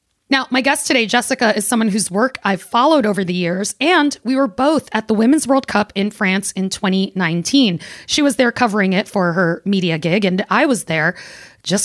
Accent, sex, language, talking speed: American, female, English, 210 wpm